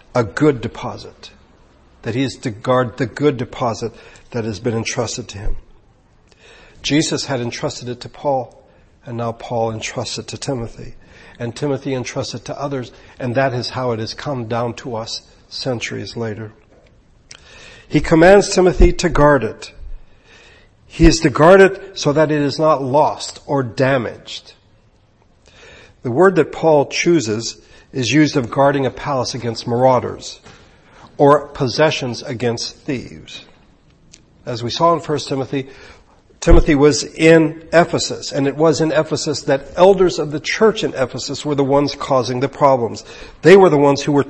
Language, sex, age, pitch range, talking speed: English, male, 60-79, 115-150 Hz, 160 wpm